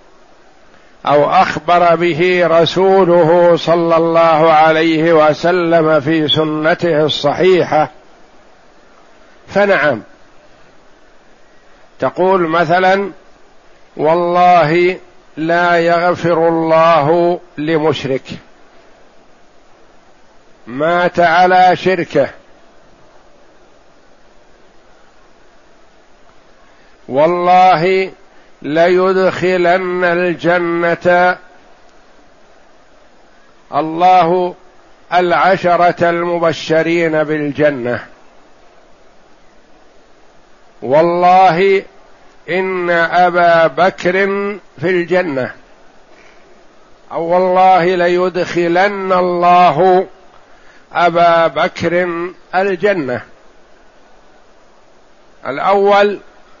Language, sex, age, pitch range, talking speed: Arabic, male, 60-79, 165-180 Hz, 45 wpm